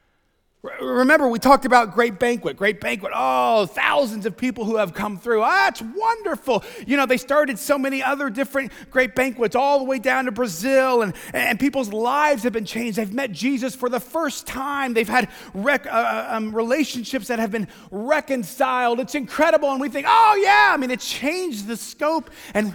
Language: English